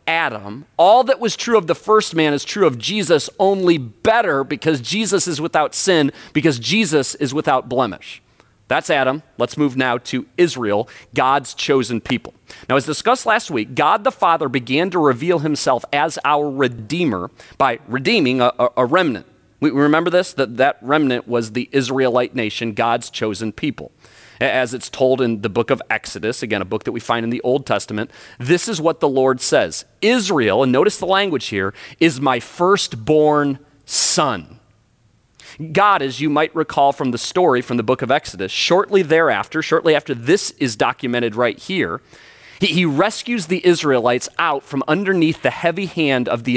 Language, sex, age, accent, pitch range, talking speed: English, male, 30-49, American, 125-165 Hz, 180 wpm